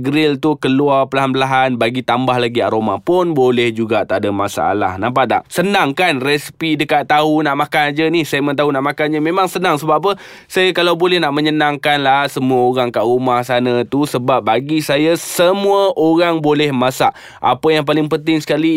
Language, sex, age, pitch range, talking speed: Malay, male, 20-39, 115-150 Hz, 185 wpm